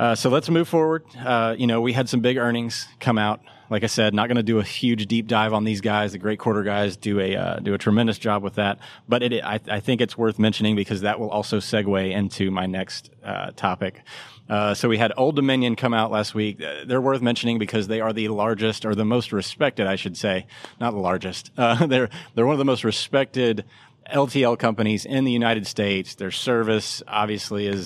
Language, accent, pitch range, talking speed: English, American, 105-120 Hz, 230 wpm